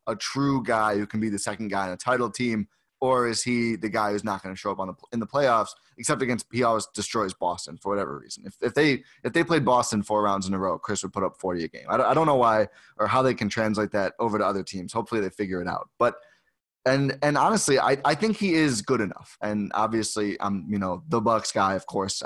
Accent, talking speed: American, 260 wpm